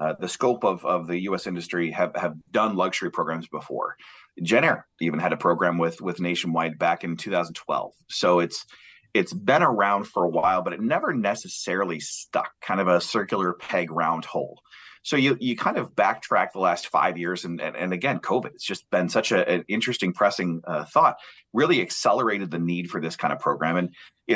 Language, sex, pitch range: English, male, 85-95 Hz